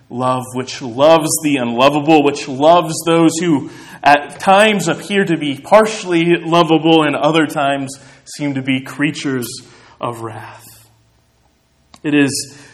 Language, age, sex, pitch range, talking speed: English, 20-39, male, 115-145 Hz, 125 wpm